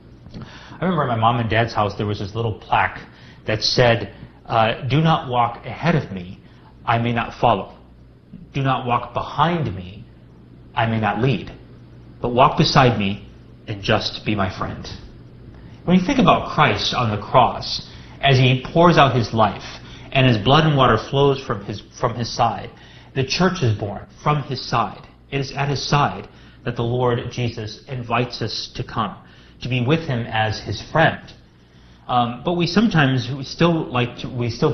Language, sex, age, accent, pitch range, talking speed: English, male, 30-49, American, 110-140 Hz, 180 wpm